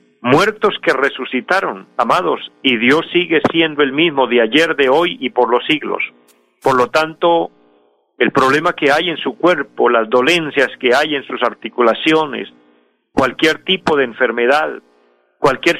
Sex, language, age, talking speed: male, Spanish, 50-69, 150 wpm